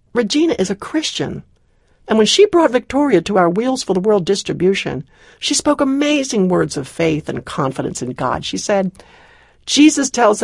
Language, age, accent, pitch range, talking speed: English, 60-79, American, 180-260 Hz, 170 wpm